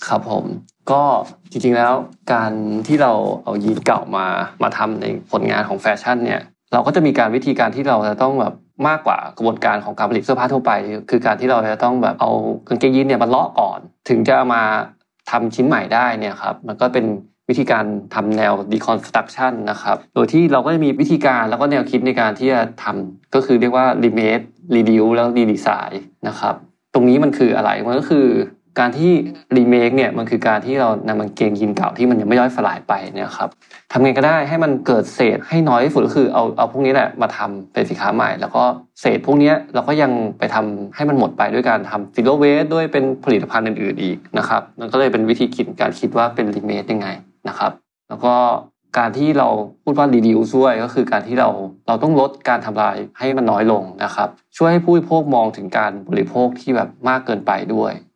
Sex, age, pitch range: male, 20-39, 110-135 Hz